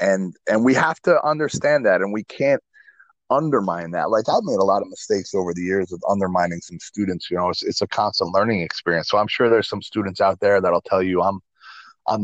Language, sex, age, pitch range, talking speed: English, male, 30-49, 95-120 Hz, 230 wpm